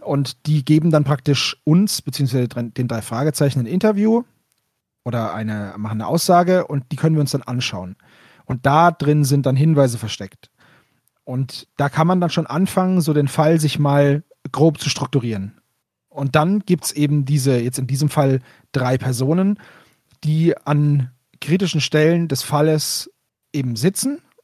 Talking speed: 160 wpm